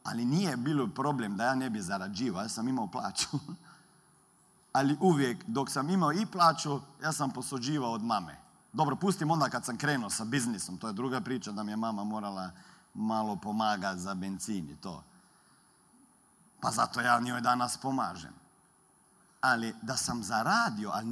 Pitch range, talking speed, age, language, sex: 120-175 Hz, 170 wpm, 40-59, Croatian, male